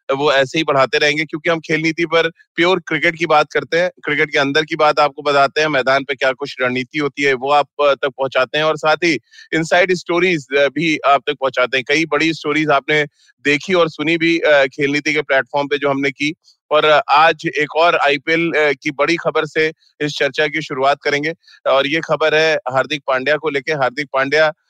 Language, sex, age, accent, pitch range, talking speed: Hindi, male, 30-49, native, 145-165 Hz, 210 wpm